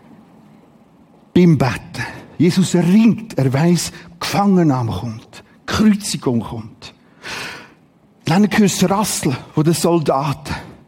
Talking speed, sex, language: 100 wpm, male, German